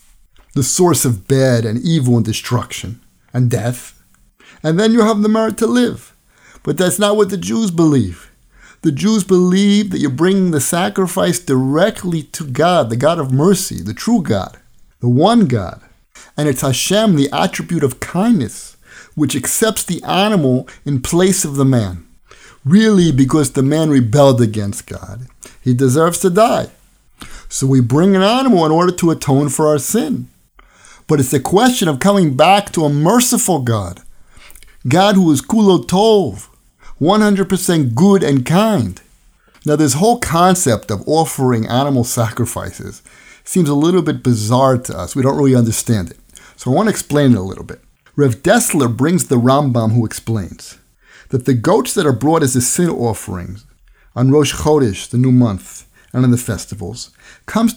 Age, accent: 50-69, American